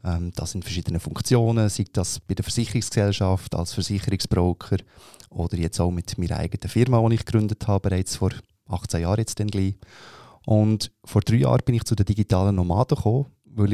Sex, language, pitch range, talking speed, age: male, German, 95-115 Hz, 165 wpm, 20-39